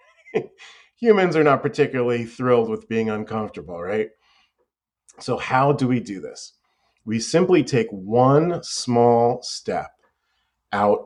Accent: American